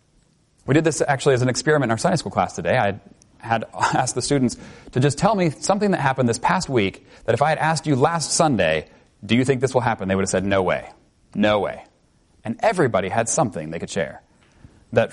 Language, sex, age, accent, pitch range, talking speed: English, male, 30-49, American, 100-135 Hz, 230 wpm